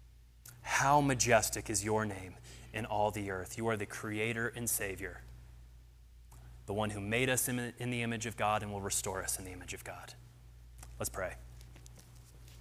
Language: English